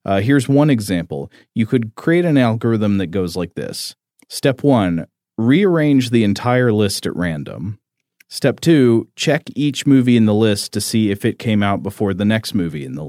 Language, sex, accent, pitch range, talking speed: English, male, American, 95-120 Hz, 190 wpm